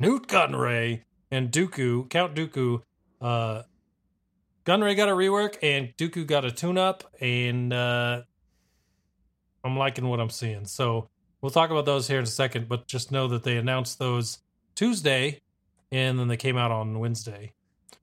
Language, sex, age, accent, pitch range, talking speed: English, male, 30-49, American, 120-160 Hz, 160 wpm